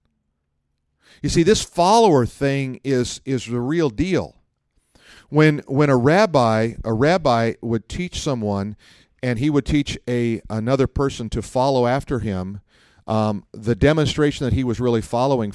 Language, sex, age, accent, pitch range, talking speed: English, male, 50-69, American, 105-130 Hz, 145 wpm